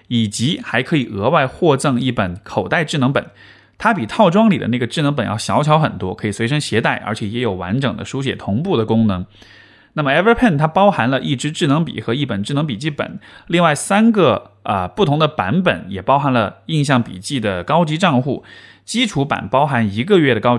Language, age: Chinese, 20-39